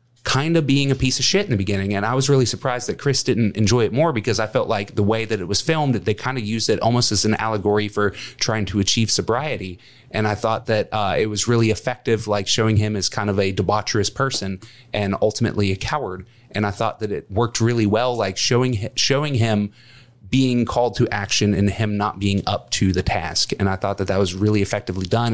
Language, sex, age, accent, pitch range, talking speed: English, male, 30-49, American, 100-120 Hz, 240 wpm